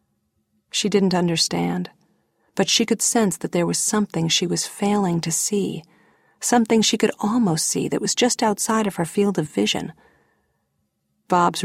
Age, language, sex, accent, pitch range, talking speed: 40-59, English, female, American, 160-190 Hz, 160 wpm